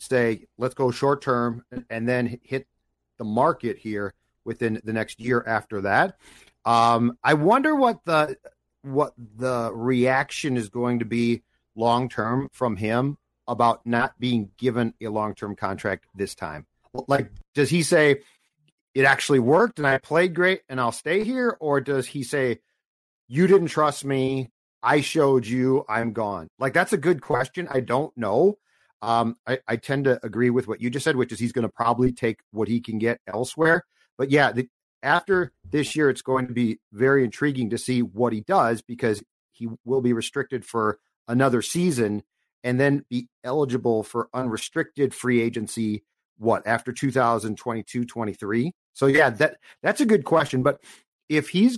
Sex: male